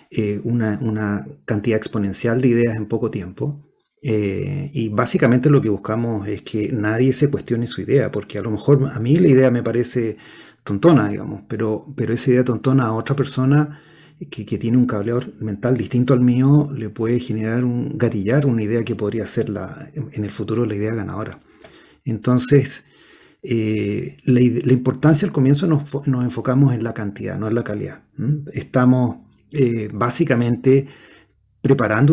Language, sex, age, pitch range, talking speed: Spanish, male, 40-59, 110-140 Hz, 165 wpm